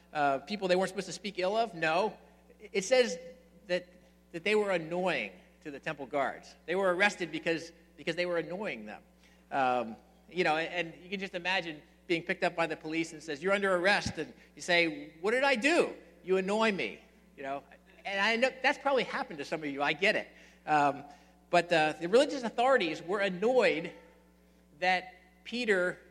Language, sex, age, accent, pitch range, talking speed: English, male, 50-69, American, 155-210 Hz, 195 wpm